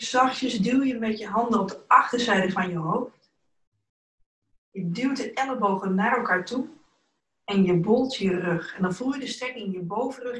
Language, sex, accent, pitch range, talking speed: Dutch, female, Dutch, 190-235 Hz, 190 wpm